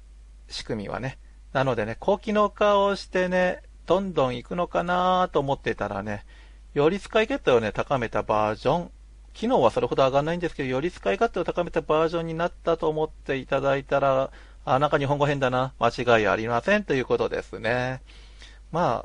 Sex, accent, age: male, native, 40-59